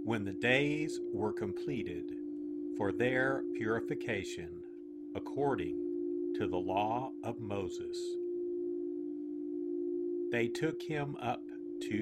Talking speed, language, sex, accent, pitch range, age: 95 wpm, English, male, American, 320-345 Hz, 50-69